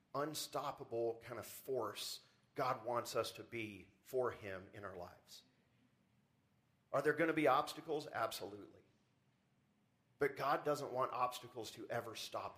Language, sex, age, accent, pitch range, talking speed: English, male, 40-59, American, 130-170 Hz, 140 wpm